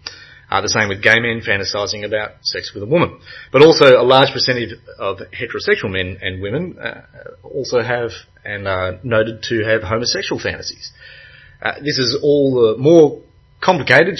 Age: 30-49